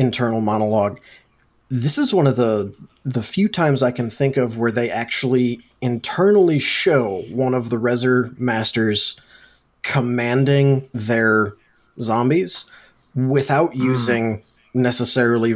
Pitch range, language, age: 115-135 Hz, English, 20-39